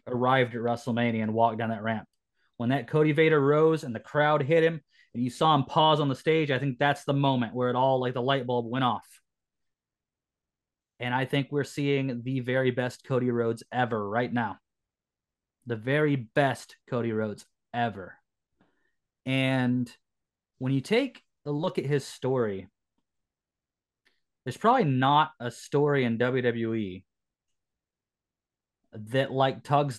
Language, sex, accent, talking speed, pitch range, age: English, male, American, 155 wpm, 120-155 Hz, 30-49